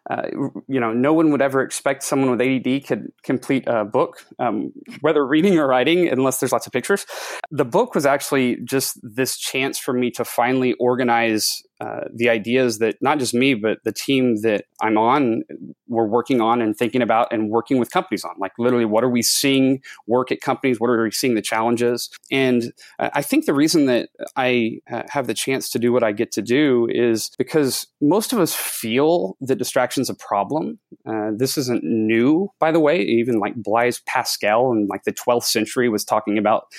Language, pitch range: English, 115-135 Hz